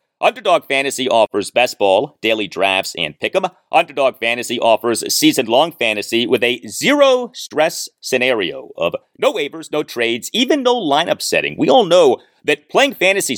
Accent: American